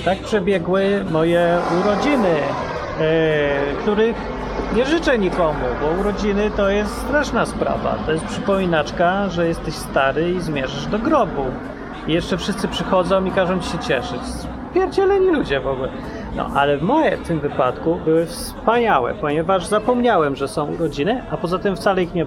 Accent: native